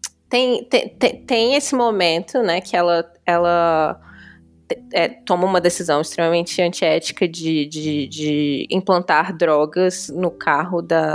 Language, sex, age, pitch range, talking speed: Portuguese, female, 20-39, 175-235 Hz, 130 wpm